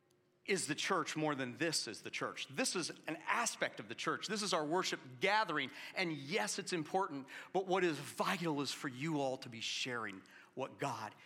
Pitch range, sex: 120-150 Hz, male